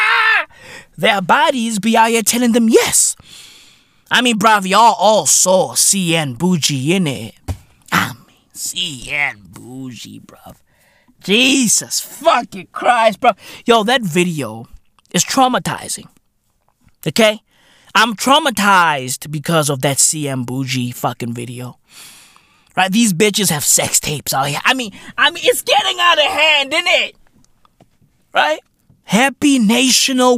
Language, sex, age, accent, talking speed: English, male, 20-39, American, 125 wpm